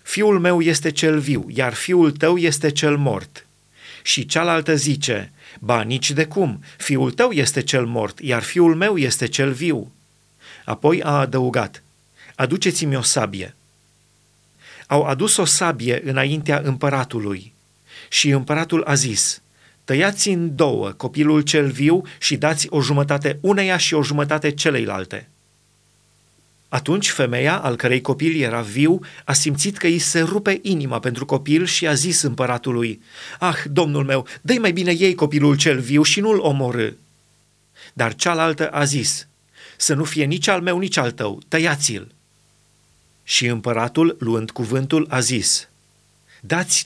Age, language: 30-49, Romanian